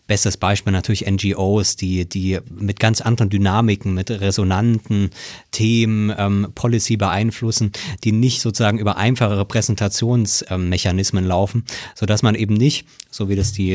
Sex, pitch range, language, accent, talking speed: male, 100-120 Hz, German, German, 135 wpm